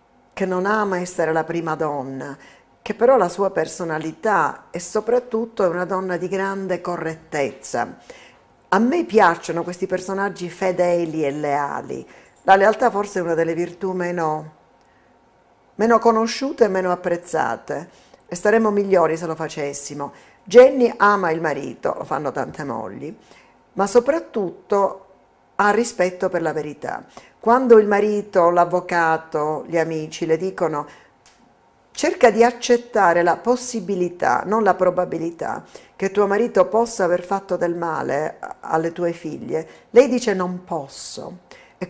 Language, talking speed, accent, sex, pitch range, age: Italian, 135 wpm, native, female, 165-215 Hz, 50-69